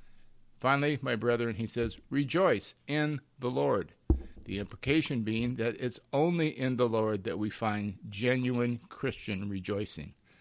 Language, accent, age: English, American, 50-69